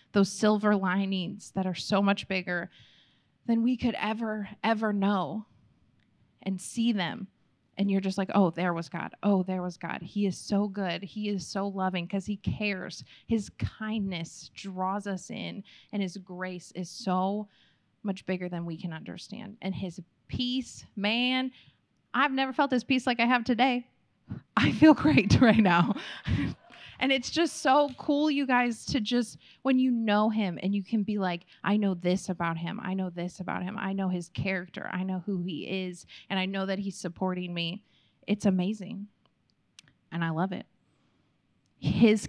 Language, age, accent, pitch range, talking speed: English, 20-39, American, 180-215 Hz, 175 wpm